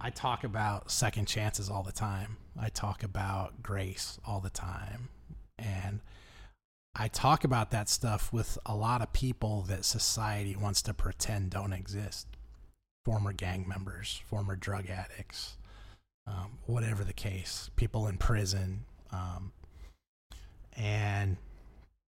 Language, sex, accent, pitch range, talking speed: English, male, American, 90-110 Hz, 130 wpm